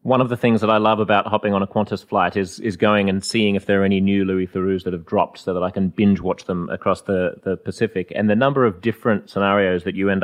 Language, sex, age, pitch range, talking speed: English, male, 30-49, 100-125 Hz, 275 wpm